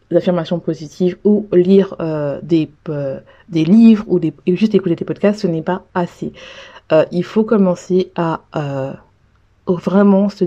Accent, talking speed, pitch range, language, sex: French, 150 wpm, 170-190 Hz, French, female